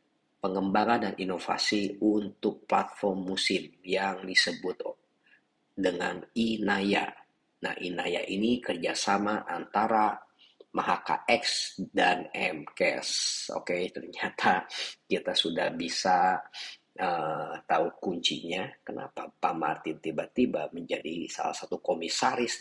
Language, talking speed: Indonesian, 100 wpm